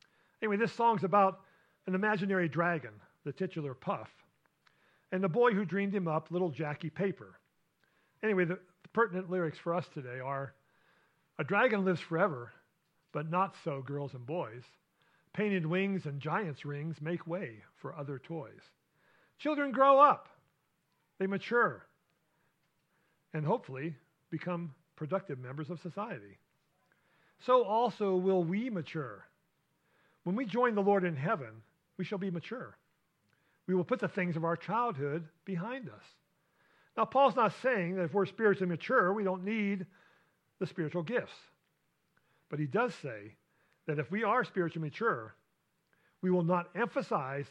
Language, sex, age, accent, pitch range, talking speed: English, male, 50-69, American, 155-200 Hz, 145 wpm